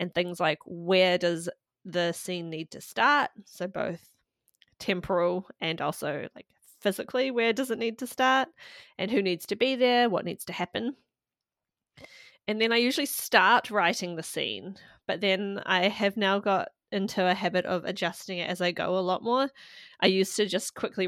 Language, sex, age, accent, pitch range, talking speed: English, female, 20-39, Australian, 170-210 Hz, 180 wpm